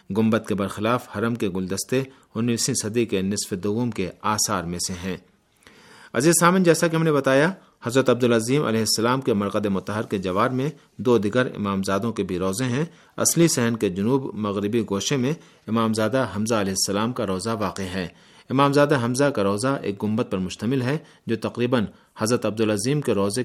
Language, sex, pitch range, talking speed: Urdu, male, 100-130 Hz, 185 wpm